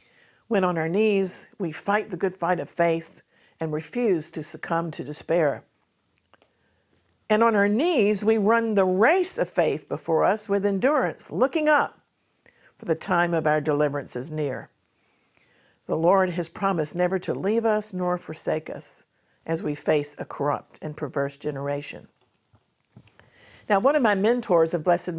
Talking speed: 160 wpm